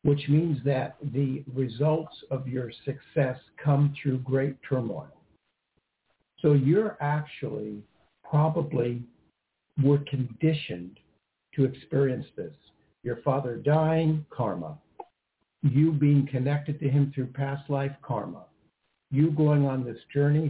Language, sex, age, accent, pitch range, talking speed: English, male, 60-79, American, 130-150 Hz, 115 wpm